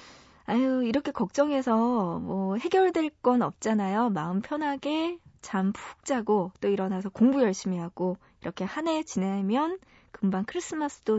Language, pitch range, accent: Korean, 190-255 Hz, native